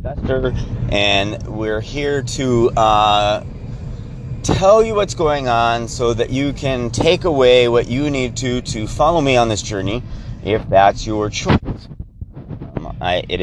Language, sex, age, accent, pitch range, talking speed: English, male, 30-49, American, 110-125 Hz, 145 wpm